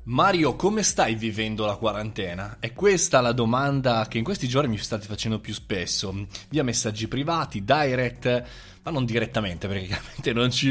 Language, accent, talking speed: Italian, native, 170 wpm